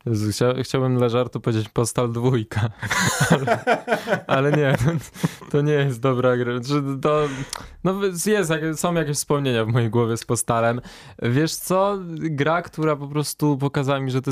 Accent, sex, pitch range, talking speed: native, male, 115-145 Hz, 155 wpm